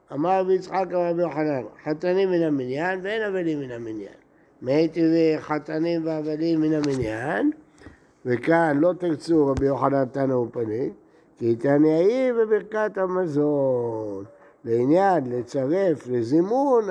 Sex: male